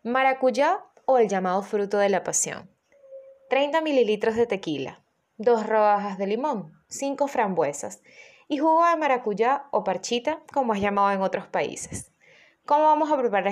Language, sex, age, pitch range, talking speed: Spanish, female, 20-39, 210-285 Hz, 150 wpm